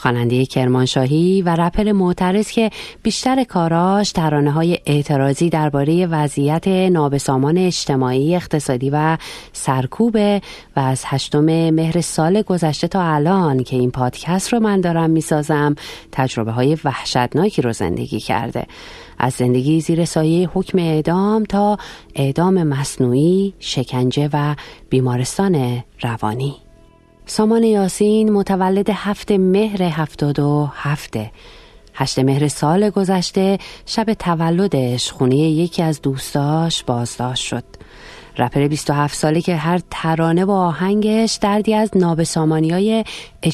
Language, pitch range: Persian, 135-185 Hz